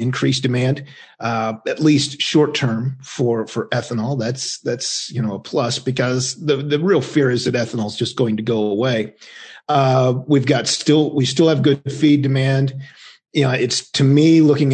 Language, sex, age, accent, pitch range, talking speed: English, male, 40-59, American, 125-155 Hz, 185 wpm